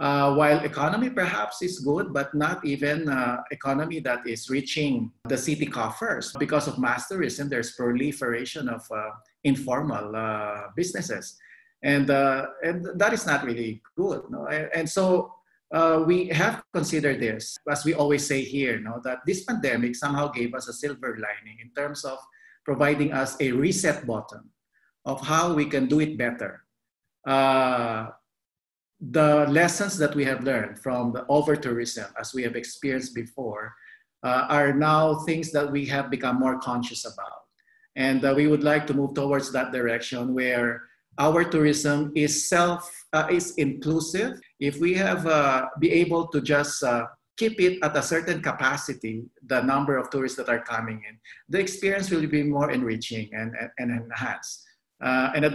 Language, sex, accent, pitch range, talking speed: English, male, Filipino, 125-155 Hz, 165 wpm